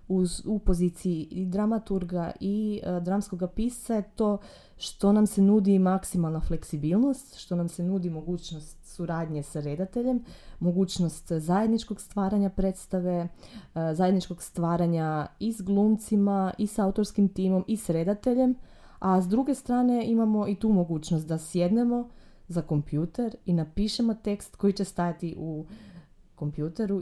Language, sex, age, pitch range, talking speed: Croatian, female, 20-39, 170-205 Hz, 135 wpm